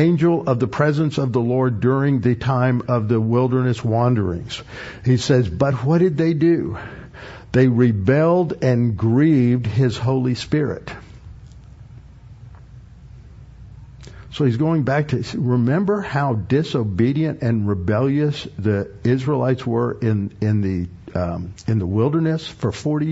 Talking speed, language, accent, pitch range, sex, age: 120 wpm, English, American, 110-140 Hz, male, 60-79